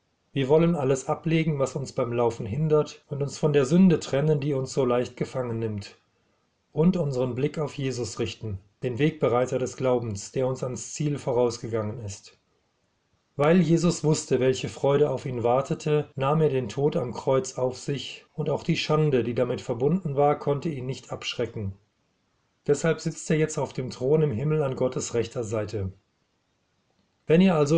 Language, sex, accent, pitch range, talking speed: German, male, German, 115-150 Hz, 175 wpm